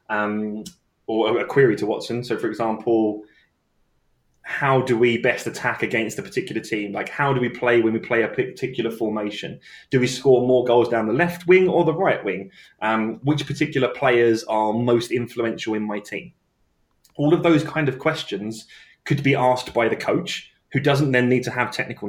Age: 20-39